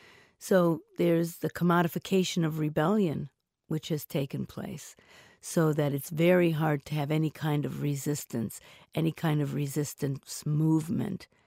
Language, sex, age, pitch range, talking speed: English, female, 50-69, 145-165 Hz, 135 wpm